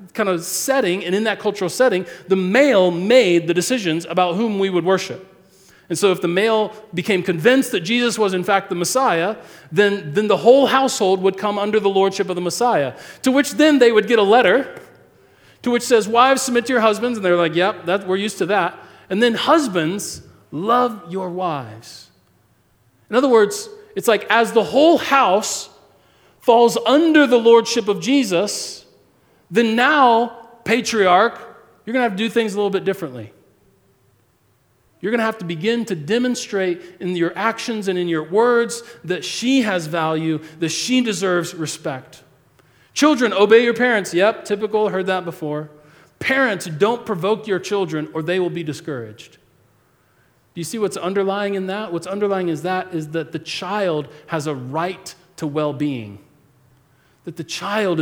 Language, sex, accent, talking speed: English, male, American, 175 wpm